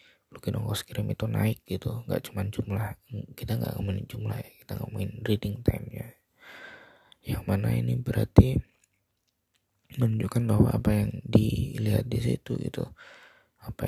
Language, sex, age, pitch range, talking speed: Indonesian, male, 20-39, 100-115 Hz, 140 wpm